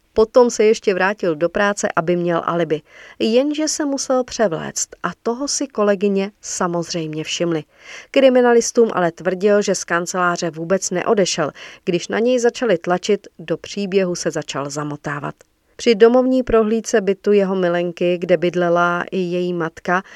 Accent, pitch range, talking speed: native, 175-225 Hz, 145 wpm